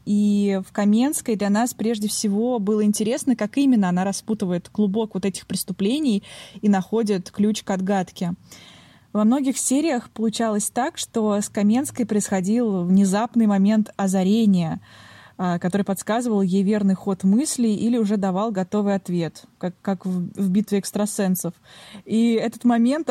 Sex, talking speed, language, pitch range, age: female, 140 wpm, Russian, 195-230 Hz, 20-39